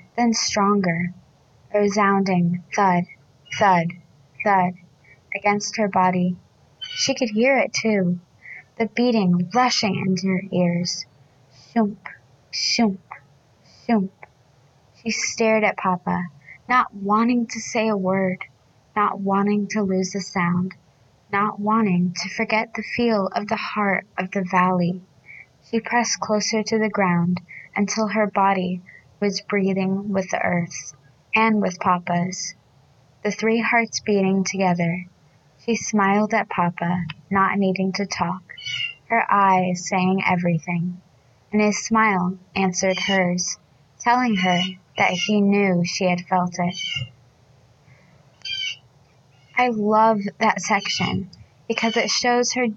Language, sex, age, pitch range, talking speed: English, female, 20-39, 175-210 Hz, 125 wpm